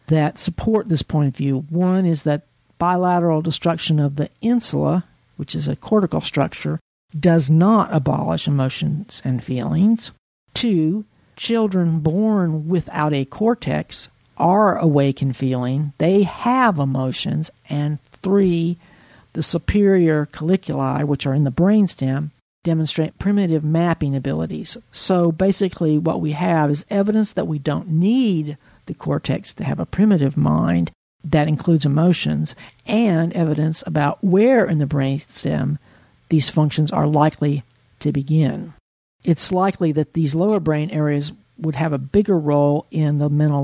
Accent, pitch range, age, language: American, 145-180 Hz, 60-79, English